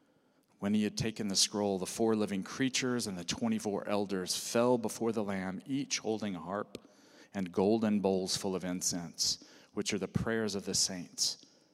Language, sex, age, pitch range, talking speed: English, male, 40-59, 95-120 Hz, 180 wpm